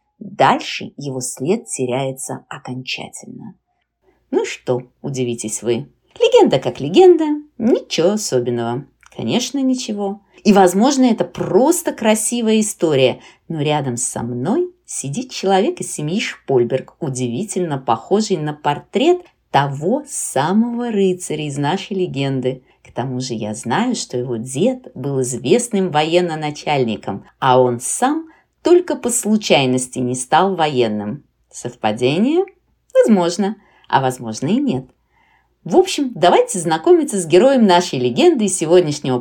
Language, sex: Russian, female